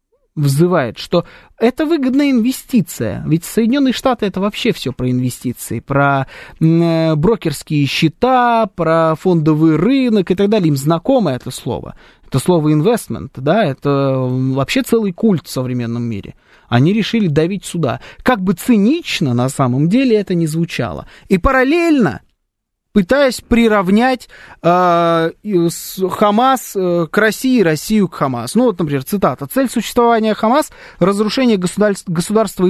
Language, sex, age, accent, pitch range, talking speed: Russian, male, 20-39, native, 155-215 Hz, 130 wpm